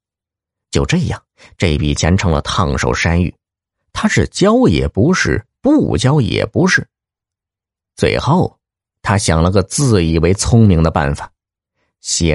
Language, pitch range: Chinese, 85-115 Hz